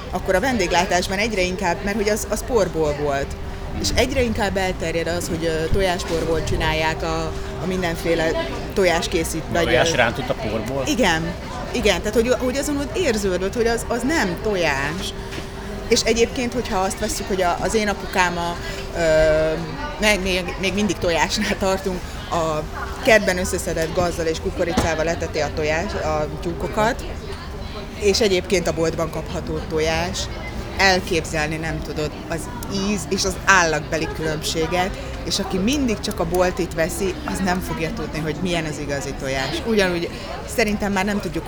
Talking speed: 150 wpm